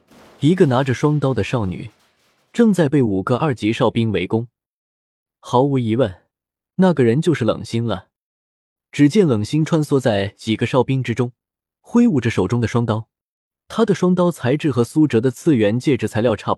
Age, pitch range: 20-39, 110-160 Hz